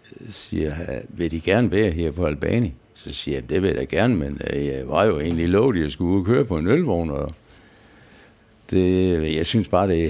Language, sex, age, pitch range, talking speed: Danish, male, 60-79, 90-125 Hz, 210 wpm